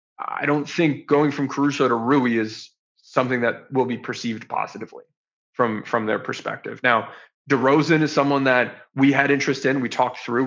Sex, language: male, English